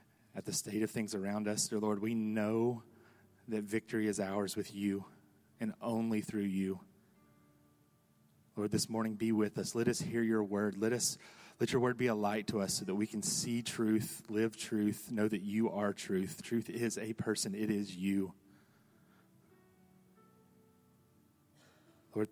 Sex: male